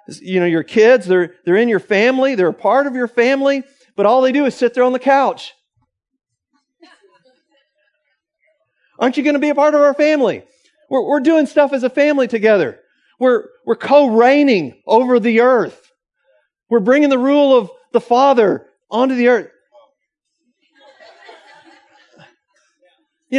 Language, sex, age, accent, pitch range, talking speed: English, male, 50-69, American, 200-275 Hz, 155 wpm